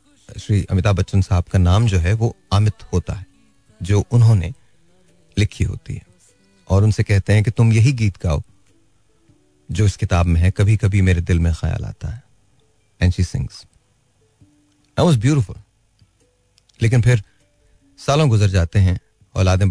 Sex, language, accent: male, Hindi, native